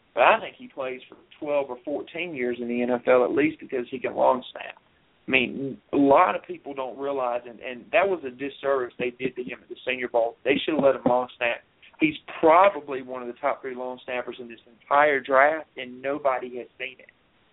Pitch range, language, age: 130-195 Hz, English, 40-59